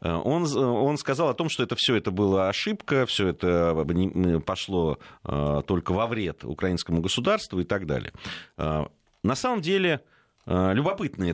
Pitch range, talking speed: 85-125 Hz, 140 wpm